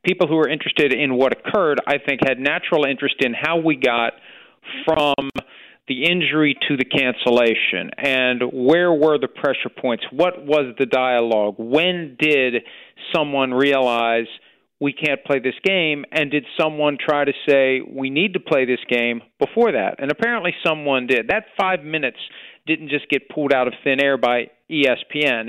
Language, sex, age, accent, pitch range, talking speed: English, male, 40-59, American, 130-160 Hz, 170 wpm